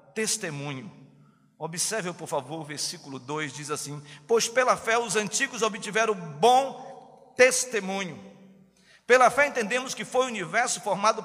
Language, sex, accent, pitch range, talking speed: Portuguese, male, Brazilian, 190-245 Hz, 135 wpm